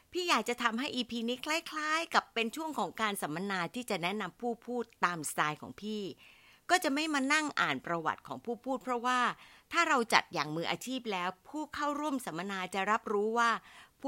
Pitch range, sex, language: 160-230 Hz, female, Thai